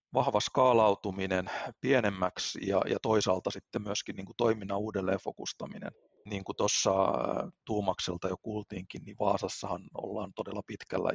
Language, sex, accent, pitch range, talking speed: Finnish, male, native, 100-115 Hz, 120 wpm